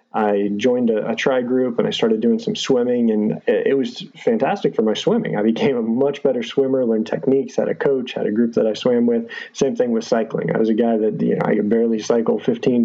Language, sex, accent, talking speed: English, male, American, 250 wpm